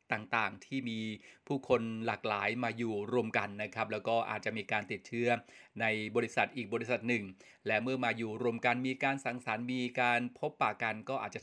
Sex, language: male, Thai